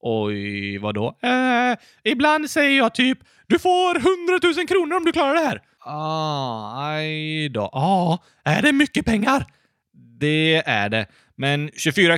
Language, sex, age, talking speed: Swedish, male, 20-39, 140 wpm